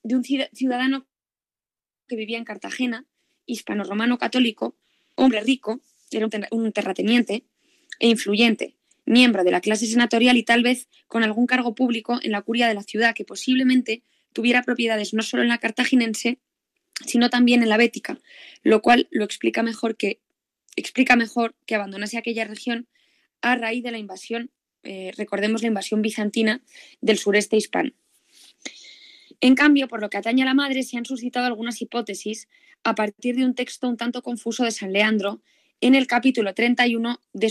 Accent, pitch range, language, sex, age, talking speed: Spanish, 215-255 Hz, Spanish, female, 20-39, 165 wpm